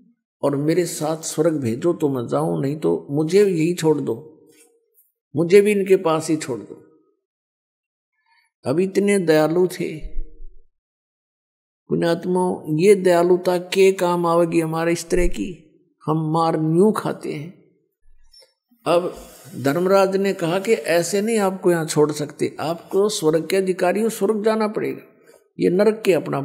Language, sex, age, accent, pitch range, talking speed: Hindi, male, 50-69, native, 160-205 Hz, 140 wpm